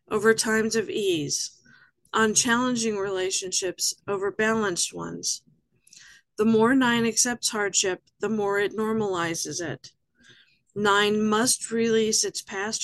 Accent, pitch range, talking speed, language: American, 195-230 Hz, 115 wpm, English